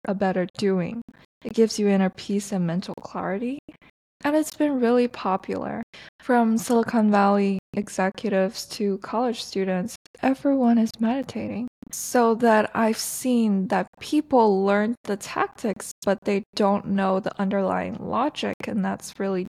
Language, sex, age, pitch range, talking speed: English, female, 20-39, 195-235 Hz, 140 wpm